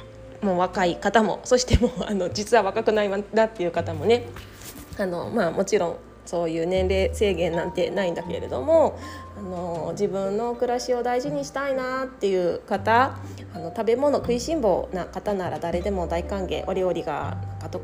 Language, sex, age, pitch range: Japanese, female, 20-39, 180-235 Hz